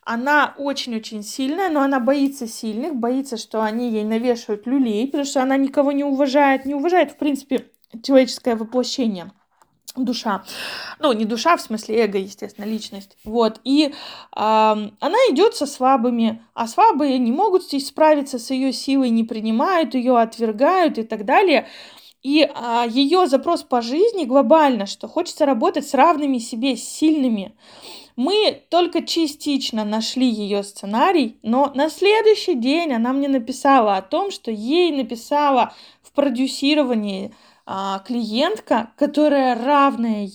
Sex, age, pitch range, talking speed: female, 20-39, 230-305 Hz, 145 wpm